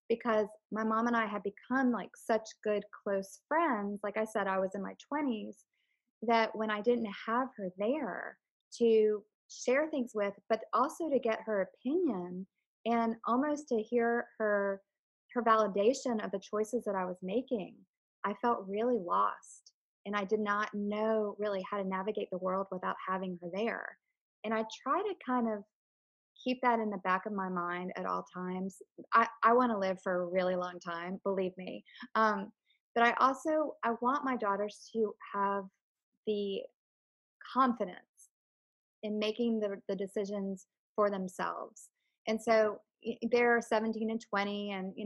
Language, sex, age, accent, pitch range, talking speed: English, female, 20-39, American, 200-235 Hz, 165 wpm